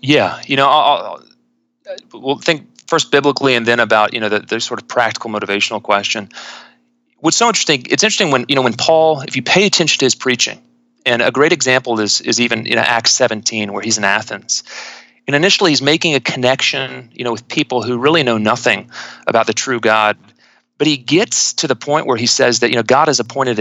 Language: English